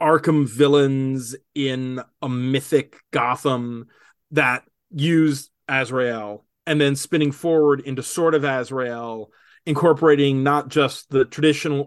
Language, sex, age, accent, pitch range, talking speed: English, male, 30-49, American, 130-155 Hz, 110 wpm